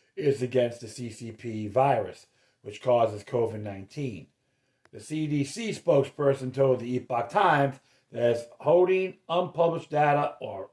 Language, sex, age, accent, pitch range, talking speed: English, male, 40-59, American, 125-155 Hz, 115 wpm